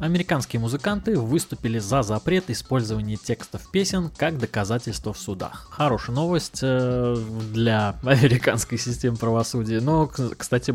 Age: 20-39